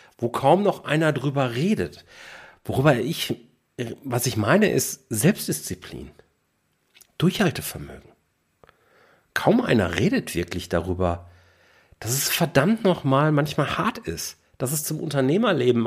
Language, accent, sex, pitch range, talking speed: German, German, male, 95-150 Hz, 115 wpm